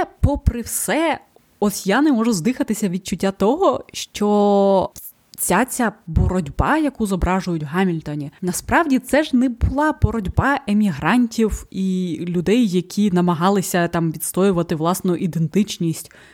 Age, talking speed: 20-39, 115 wpm